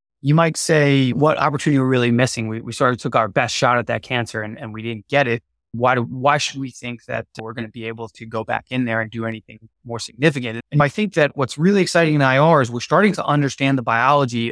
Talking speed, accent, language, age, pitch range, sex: 260 wpm, American, English, 20-39, 120-150 Hz, male